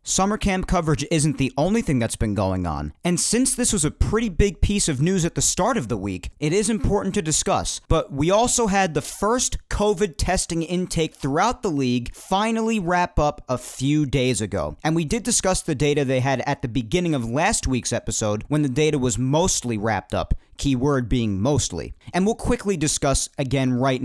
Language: English